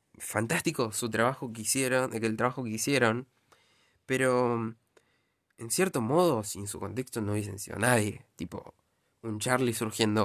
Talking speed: 140 wpm